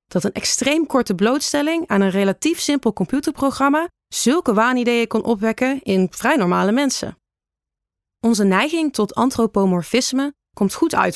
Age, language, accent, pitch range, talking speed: 30-49, Dutch, Dutch, 190-255 Hz, 135 wpm